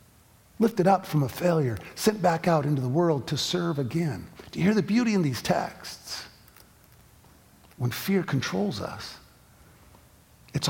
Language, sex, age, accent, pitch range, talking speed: English, male, 50-69, American, 125-160 Hz, 150 wpm